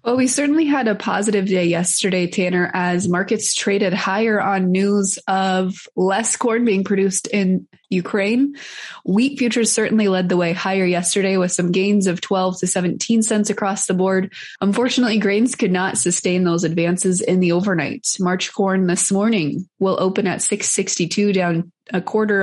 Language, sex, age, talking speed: English, female, 20-39, 165 wpm